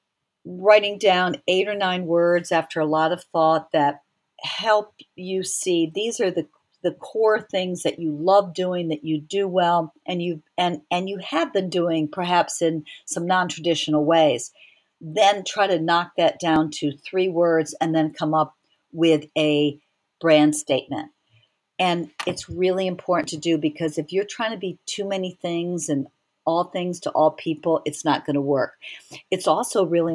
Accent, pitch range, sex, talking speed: American, 155-185 Hz, female, 175 wpm